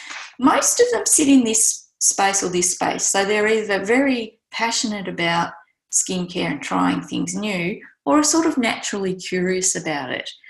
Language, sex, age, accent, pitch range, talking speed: English, female, 20-39, Australian, 185-250 Hz, 165 wpm